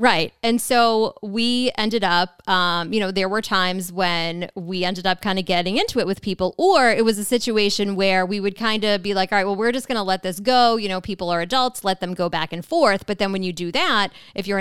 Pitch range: 190-250 Hz